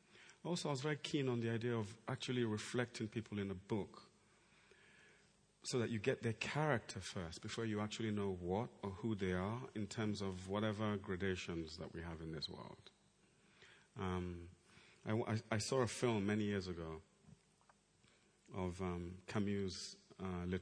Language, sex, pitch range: English, male, 90-120 Hz